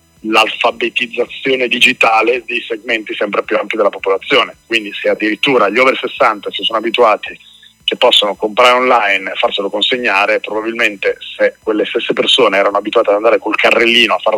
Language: Italian